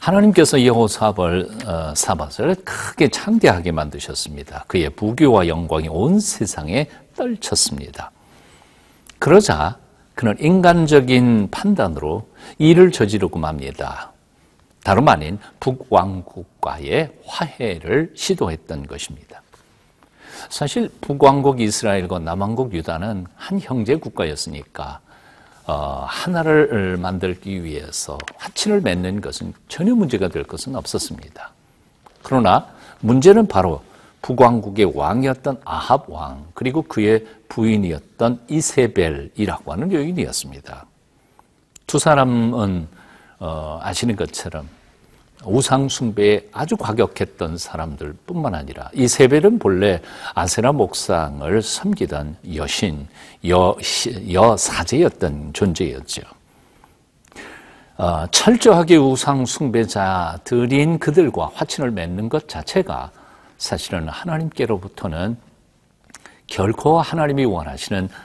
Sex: male